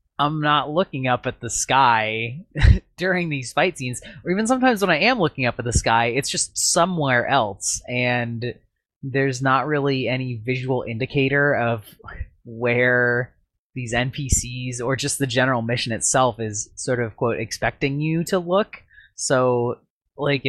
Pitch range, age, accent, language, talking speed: 110-140 Hz, 20-39, American, English, 155 wpm